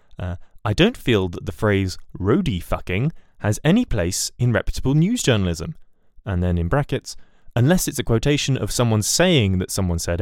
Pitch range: 90-125 Hz